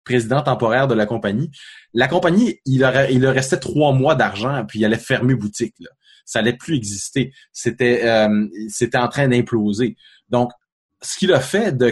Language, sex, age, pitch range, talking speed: French, male, 20-39, 115-140 Hz, 185 wpm